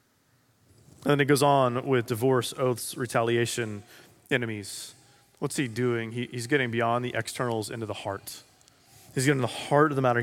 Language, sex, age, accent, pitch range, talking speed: English, male, 30-49, American, 120-145 Hz, 165 wpm